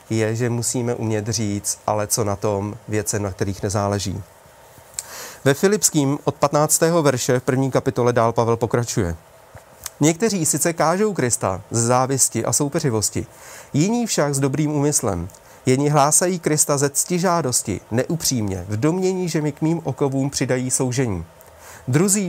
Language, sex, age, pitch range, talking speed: Czech, male, 30-49, 120-155 Hz, 145 wpm